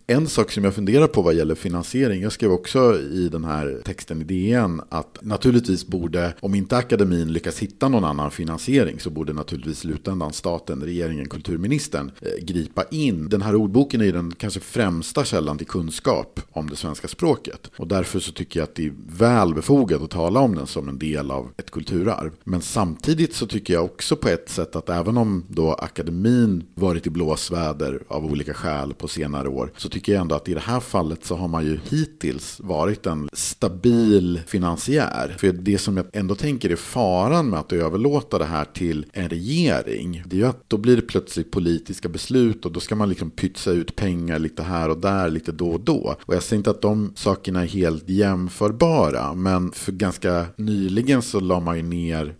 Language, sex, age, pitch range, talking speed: Swedish, male, 50-69, 80-105 Hz, 200 wpm